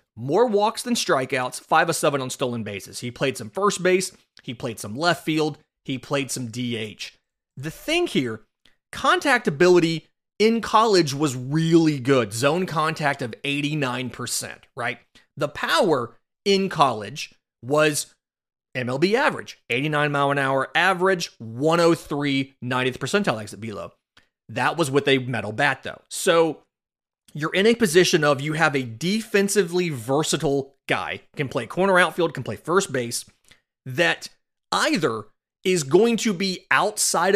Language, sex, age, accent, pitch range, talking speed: English, male, 30-49, American, 130-175 Hz, 145 wpm